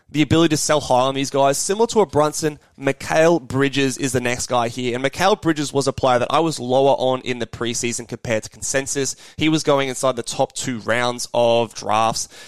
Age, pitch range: 20-39, 120-150 Hz